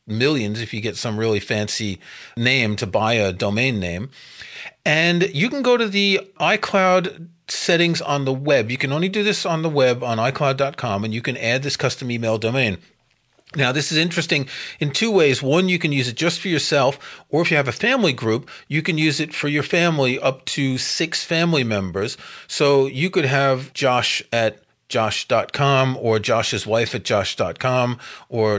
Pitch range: 120-170 Hz